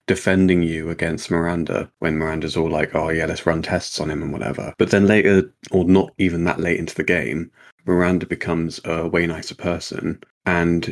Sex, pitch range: male, 85-100 Hz